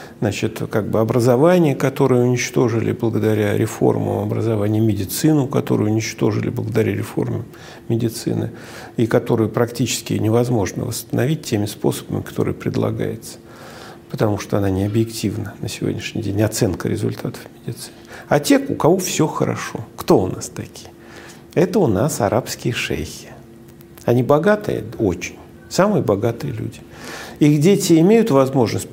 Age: 50-69